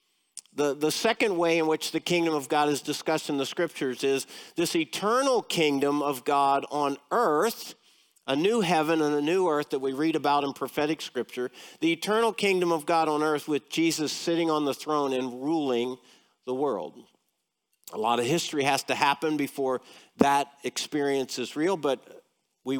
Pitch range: 140-185 Hz